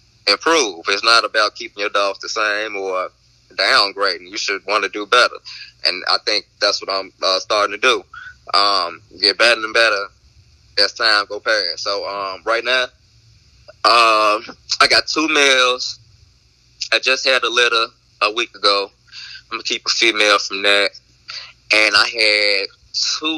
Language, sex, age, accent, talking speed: English, male, 20-39, American, 165 wpm